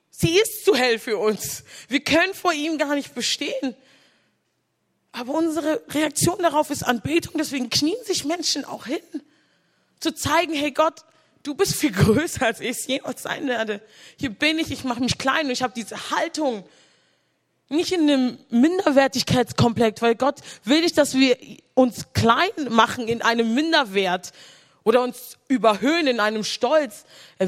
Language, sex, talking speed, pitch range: German, female, 160 wpm, 220-305 Hz